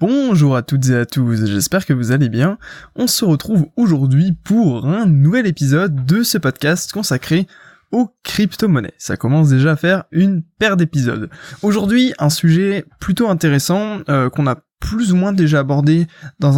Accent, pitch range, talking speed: French, 140-180 Hz, 170 wpm